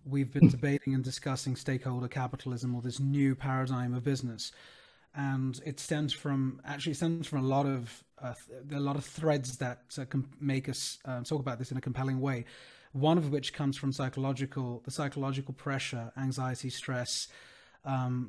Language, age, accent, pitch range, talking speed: English, 30-49, British, 125-140 Hz, 175 wpm